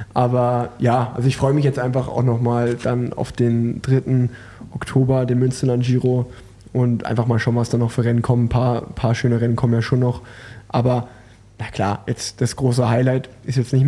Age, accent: 20-39, German